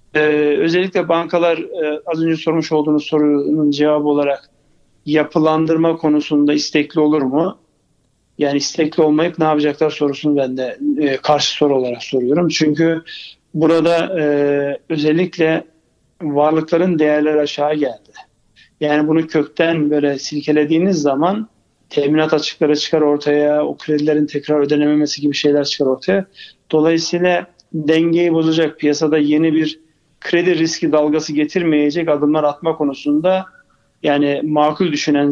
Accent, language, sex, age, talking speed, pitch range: native, Turkish, male, 50-69, 120 wpm, 145-165 Hz